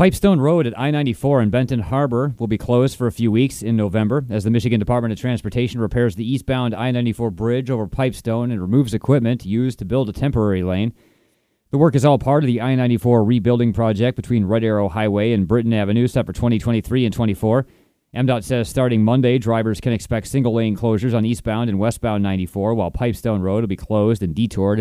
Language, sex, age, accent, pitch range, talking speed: English, male, 30-49, American, 100-120 Hz, 200 wpm